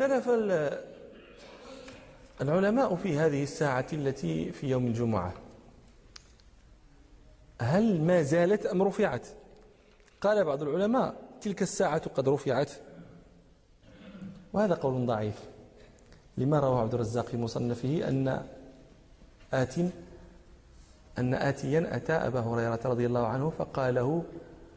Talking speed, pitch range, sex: 100 wpm, 120-175 Hz, male